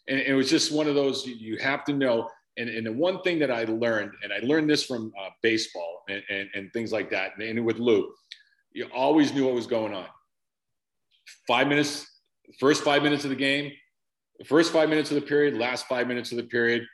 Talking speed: 225 wpm